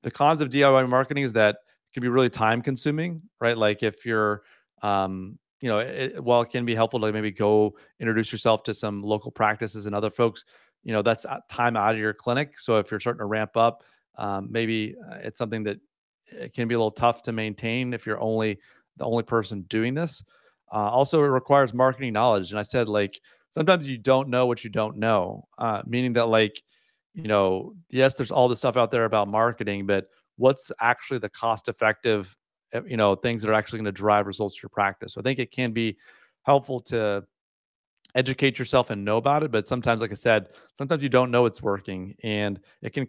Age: 30-49